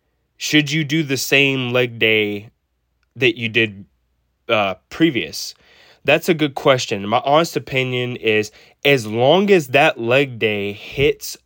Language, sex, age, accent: English, male, 20-39, American